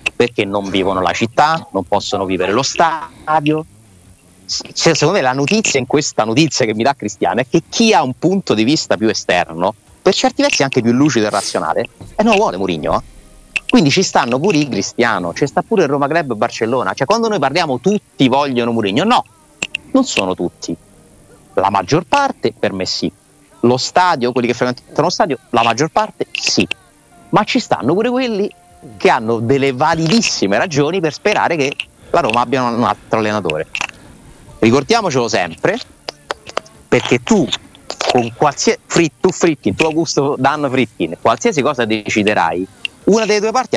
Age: 30-49